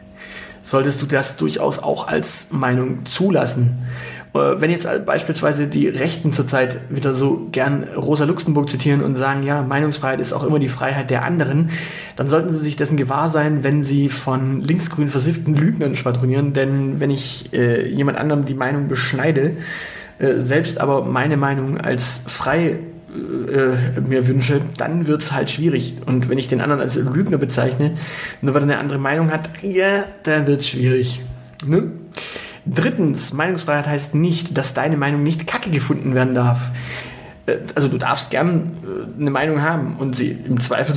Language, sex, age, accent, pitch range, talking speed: German, male, 30-49, German, 130-155 Hz, 165 wpm